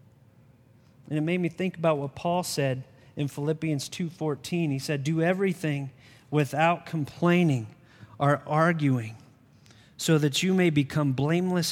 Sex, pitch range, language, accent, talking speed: male, 130-170 Hz, English, American, 135 wpm